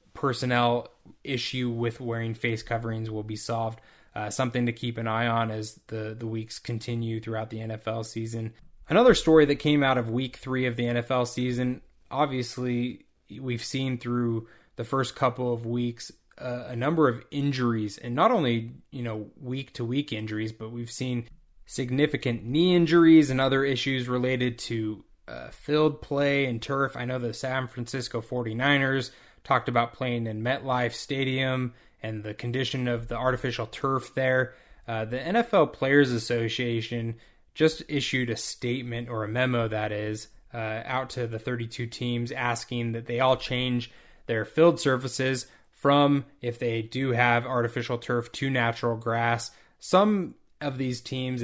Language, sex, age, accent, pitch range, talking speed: English, male, 20-39, American, 115-130 Hz, 160 wpm